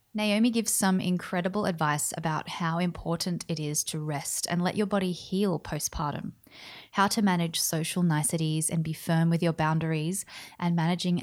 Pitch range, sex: 160-195 Hz, female